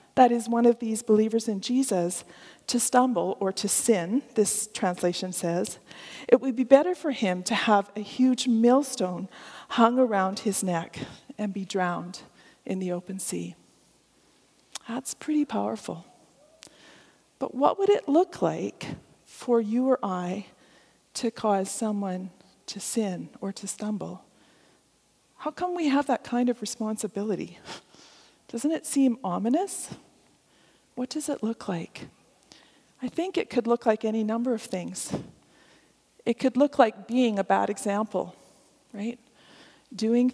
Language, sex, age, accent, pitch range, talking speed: English, female, 40-59, American, 195-255 Hz, 145 wpm